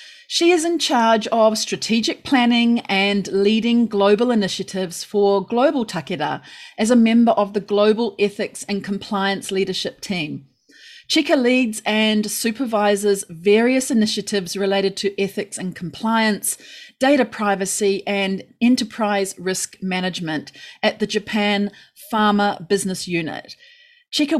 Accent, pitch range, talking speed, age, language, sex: Australian, 195-235 Hz, 120 wpm, 30-49, English, female